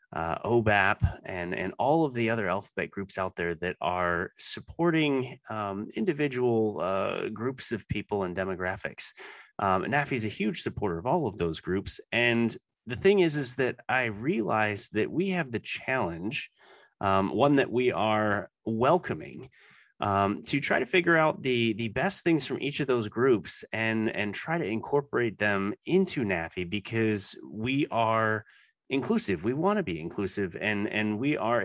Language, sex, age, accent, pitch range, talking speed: English, male, 30-49, American, 105-135 Hz, 165 wpm